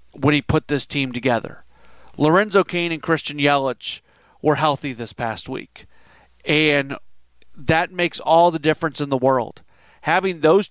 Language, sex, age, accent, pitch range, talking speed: English, male, 40-59, American, 140-165 Hz, 150 wpm